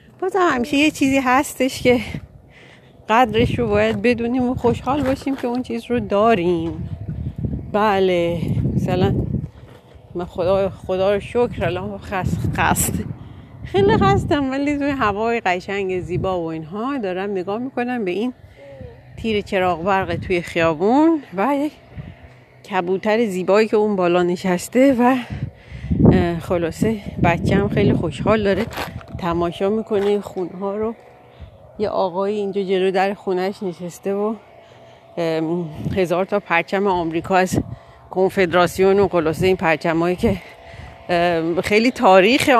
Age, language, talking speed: 40-59, Persian, 120 wpm